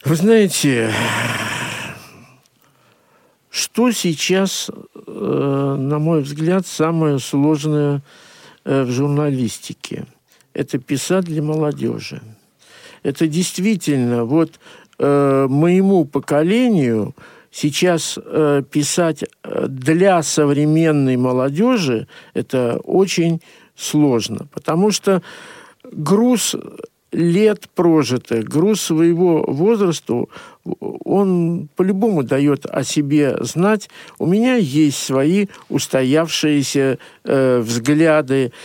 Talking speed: 75 wpm